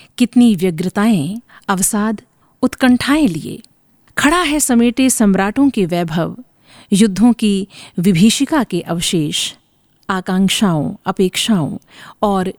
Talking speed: 90 wpm